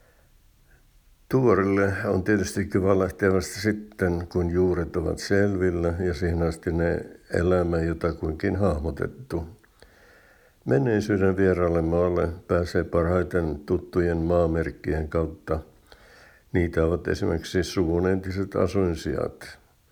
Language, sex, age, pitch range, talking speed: Finnish, male, 60-79, 80-95 Hz, 95 wpm